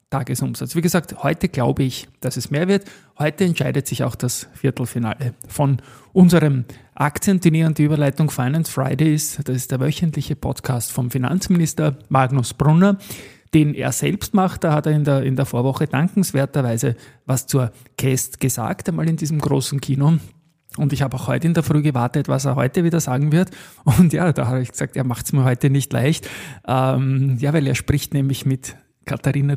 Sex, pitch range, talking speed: male, 130-150 Hz, 185 wpm